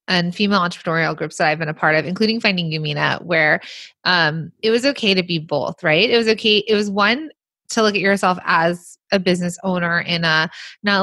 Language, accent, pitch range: English, American, 165-210 Hz